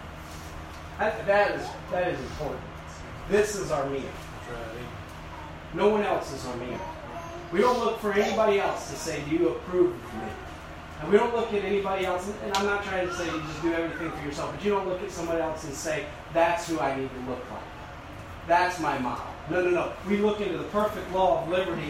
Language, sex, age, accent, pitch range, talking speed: English, male, 30-49, American, 130-185 Hz, 210 wpm